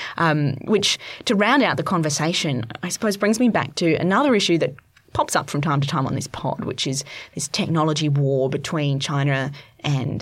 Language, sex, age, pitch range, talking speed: English, female, 20-39, 150-190 Hz, 195 wpm